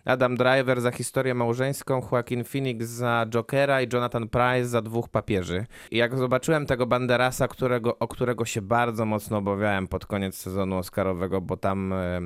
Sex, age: male, 20-39